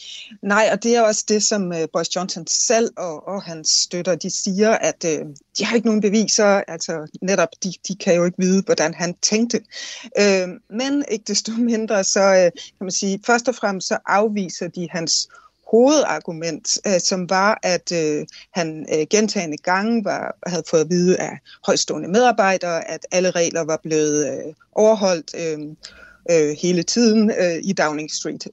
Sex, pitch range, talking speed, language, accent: female, 170-210 Hz, 175 wpm, Danish, native